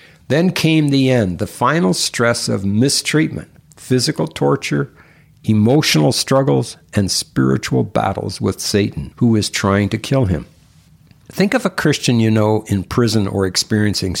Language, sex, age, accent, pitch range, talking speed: English, male, 60-79, American, 105-140 Hz, 145 wpm